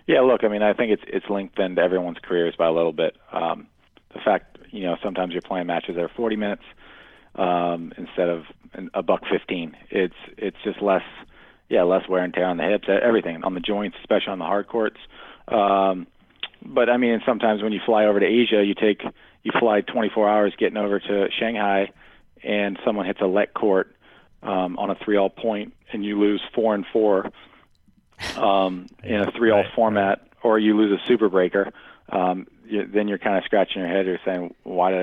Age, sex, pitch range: 40-59, male, 90-105 Hz